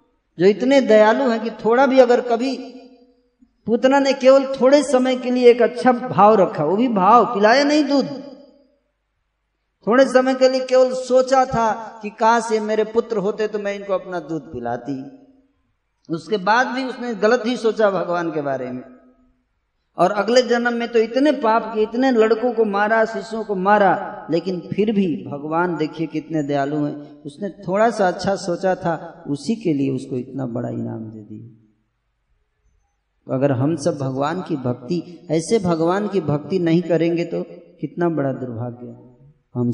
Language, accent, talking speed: Hindi, native, 170 wpm